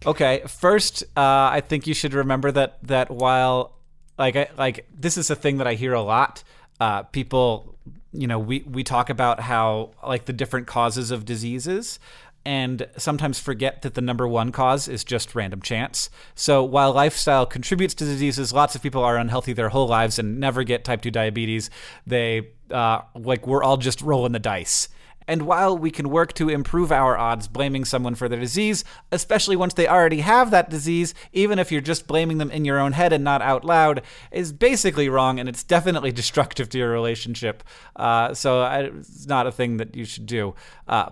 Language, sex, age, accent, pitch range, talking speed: English, male, 30-49, American, 120-150 Hz, 195 wpm